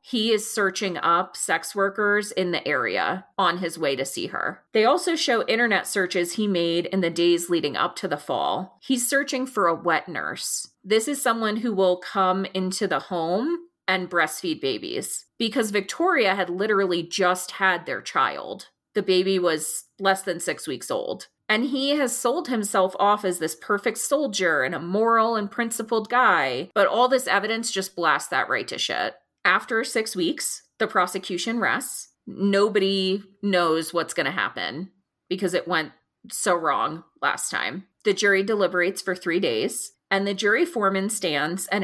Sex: female